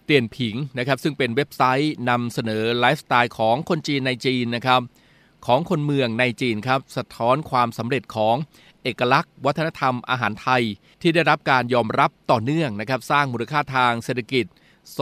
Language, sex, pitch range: Thai, male, 120-145 Hz